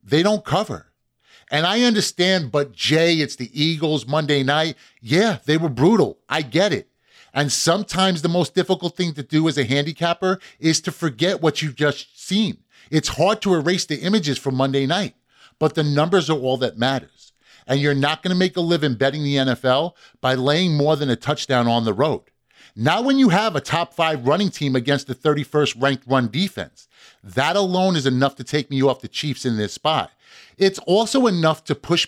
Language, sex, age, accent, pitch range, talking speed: English, male, 30-49, American, 140-185 Hz, 200 wpm